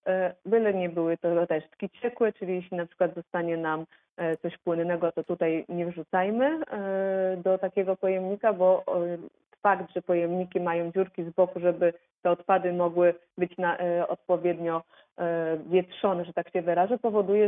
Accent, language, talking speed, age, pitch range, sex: native, Polish, 145 wpm, 30-49, 170-190 Hz, female